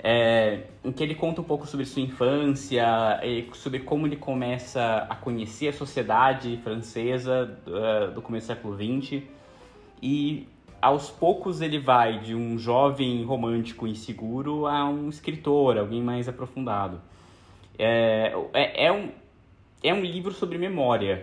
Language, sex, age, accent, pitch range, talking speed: Portuguese, male, 20-39, Brazilian, 110-140 Hz, 140 wpm